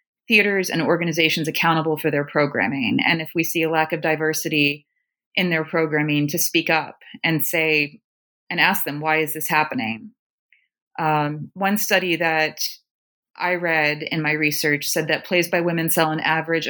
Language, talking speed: English, 170 wpm